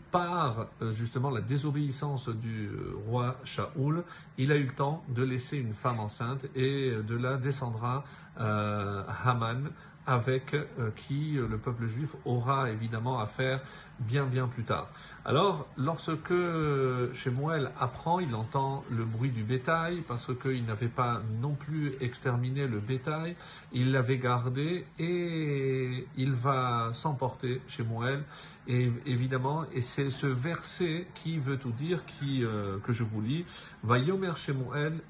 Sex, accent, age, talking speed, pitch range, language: male, French, 50-69, 150 wpm, 125-155 Hz, French